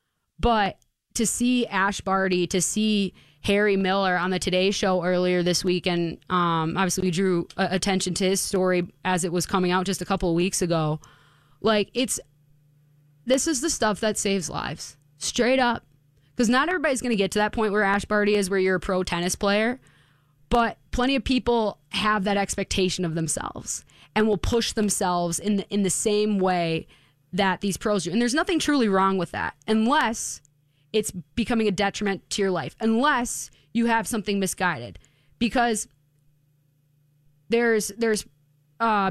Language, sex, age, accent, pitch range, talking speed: English, female, 20-39, American, 175-215 Hz, 175 wpm